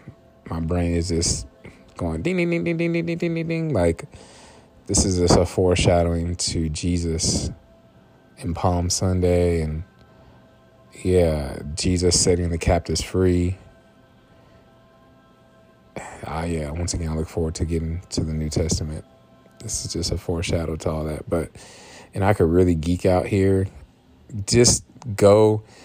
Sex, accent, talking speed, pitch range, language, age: male, American, 150 wpm, 80-90 Hz, English, 30-49